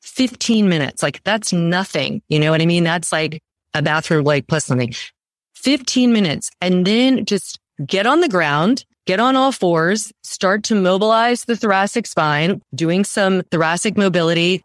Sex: female